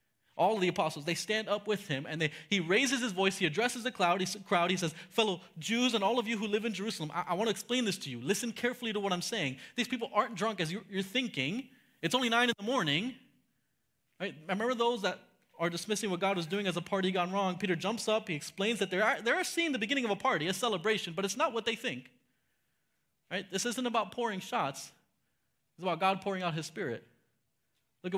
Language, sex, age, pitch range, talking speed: English, male, 30-49, 165-230 Hz, 240 wpm